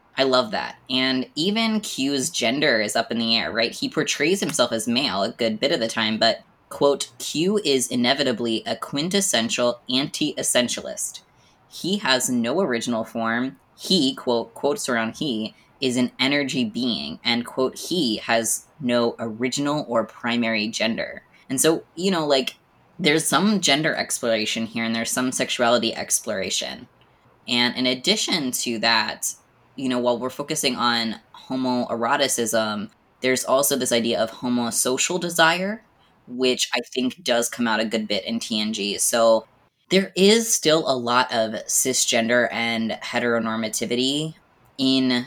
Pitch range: 115-140 Hz